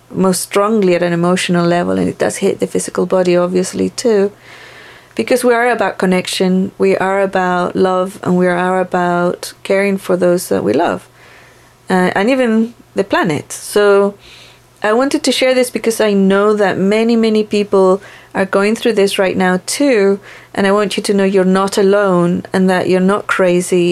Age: 30-49